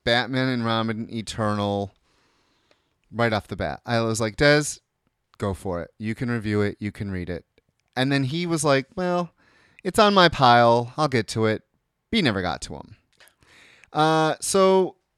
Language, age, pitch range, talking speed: English, 30-49, 110-155 Hz, 180 wpm